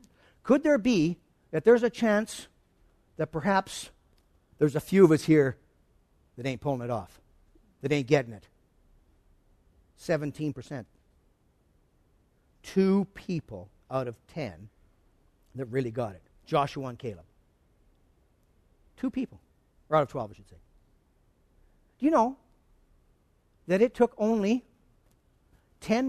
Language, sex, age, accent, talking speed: English, male, 50-69, American, 125 wpm